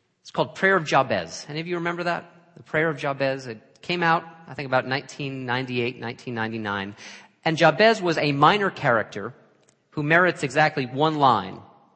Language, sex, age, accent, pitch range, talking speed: English, male, 40-59, American, 125-170 Hz, 165 wpm